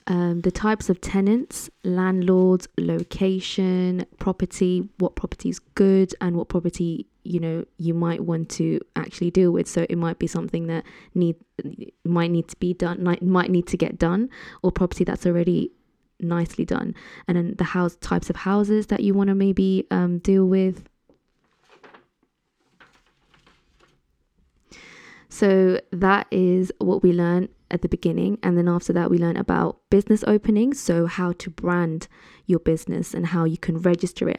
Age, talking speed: 20-39, 160 wpm